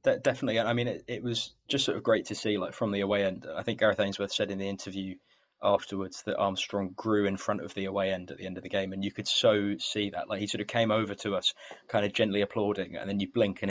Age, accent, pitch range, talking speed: 20-39, British, 95-110 Hz, 280 wpm